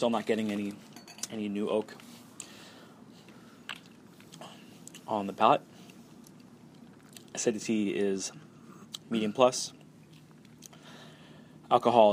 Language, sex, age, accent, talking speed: English, male, 20-39, American, 75 wpm